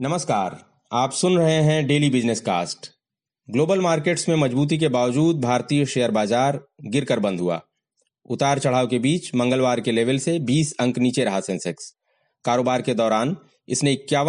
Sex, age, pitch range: male, 30-49, 125-160 Hz